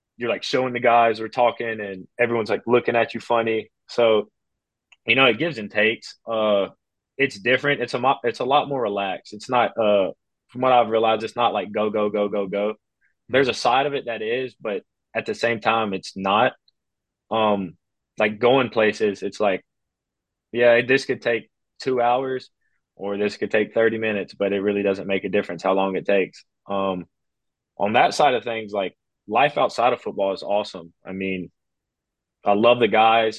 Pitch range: 100-115 Hz